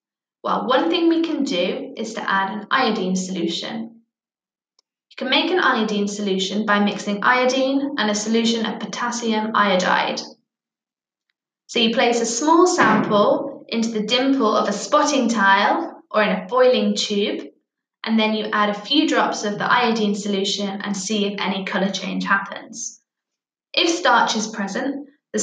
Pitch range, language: 205-260 Hz, English